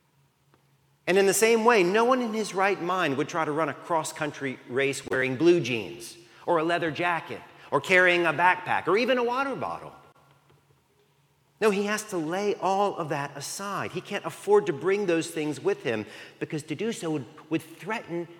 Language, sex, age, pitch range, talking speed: English, male, 40-59, 140-180 Hz, 190 wpm